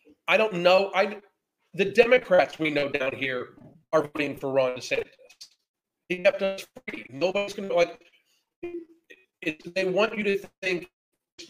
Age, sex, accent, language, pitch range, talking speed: 40-59, male, American, English, 160-195 Hz, 145 wpm